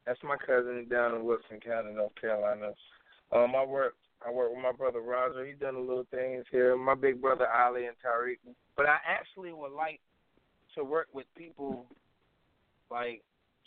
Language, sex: English, male